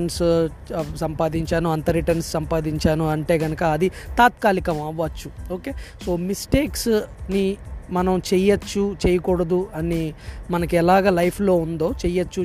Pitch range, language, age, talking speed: 170-210 Hz, Telugu, 20-39, 95 wpm